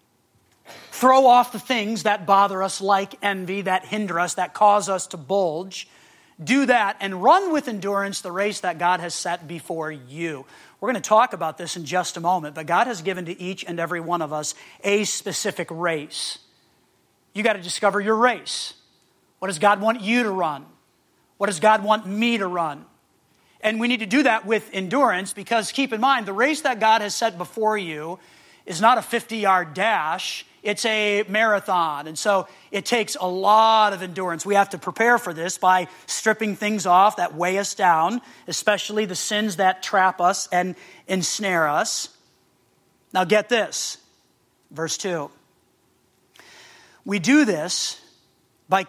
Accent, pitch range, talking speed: American, 180-220 Hz, 175 wpm